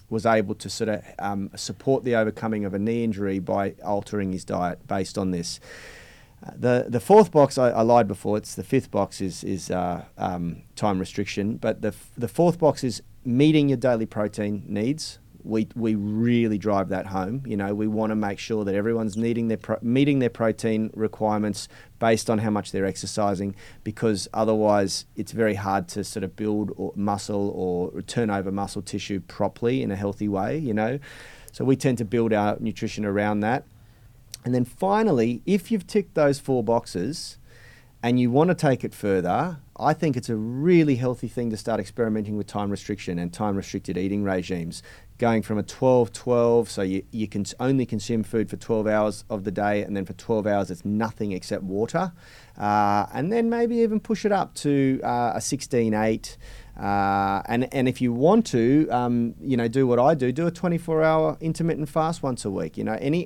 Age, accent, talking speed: 30-49, Australian, 195 wpm